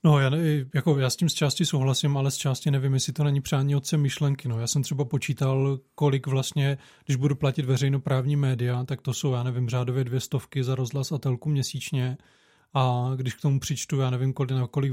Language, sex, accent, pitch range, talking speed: Czech, male, native, 130-140 Hz, 220 wpm